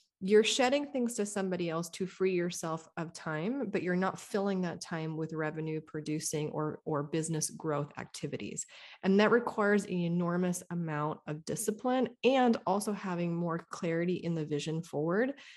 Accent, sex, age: American, female, 30-49